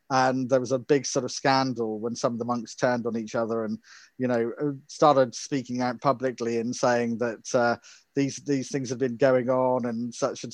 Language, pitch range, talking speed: English, 120-140 Hz, 215 wpm